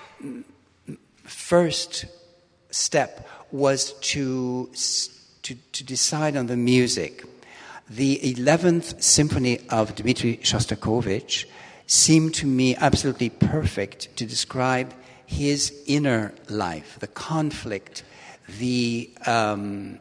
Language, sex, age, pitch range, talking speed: English, male, 60-79, 110-140 Hz, 90 wpm